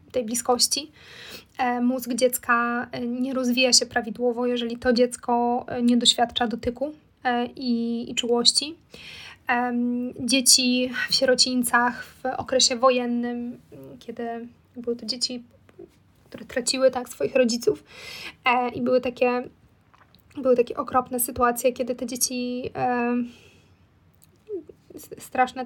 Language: Polish